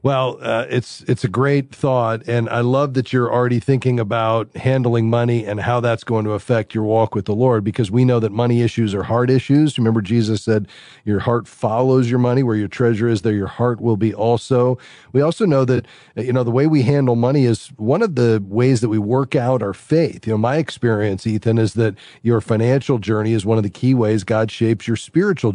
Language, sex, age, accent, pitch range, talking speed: English, male, 40-59, American, 115-135 Hz, 230 wpm